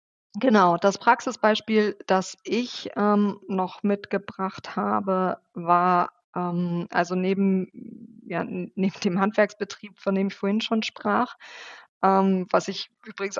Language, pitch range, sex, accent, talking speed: German, 180-210 Hz, female, German, 120 wpm